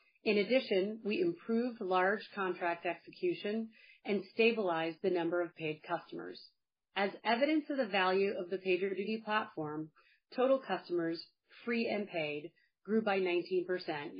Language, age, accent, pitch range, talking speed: English, 30-49, American, 175-225 Hz, 130 wpm